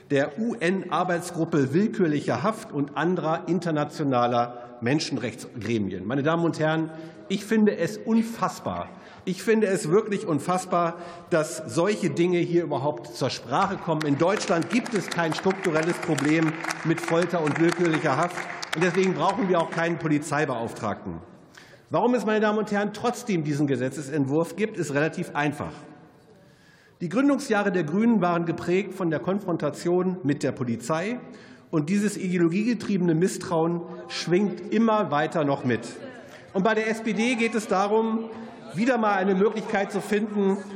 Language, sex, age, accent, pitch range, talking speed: German, male, 50-69, German, 155-195 Hz, 140 wpm